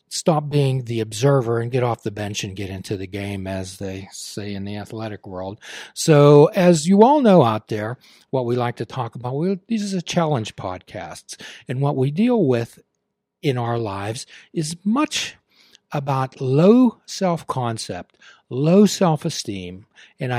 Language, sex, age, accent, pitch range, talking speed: English, male, 60-79, American, 110-155 Hz, 170 wpm